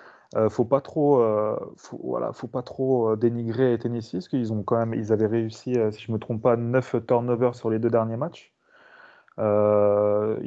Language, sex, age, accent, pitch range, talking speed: French, male, 30-49, French, 105-125 Hz, 190 wpm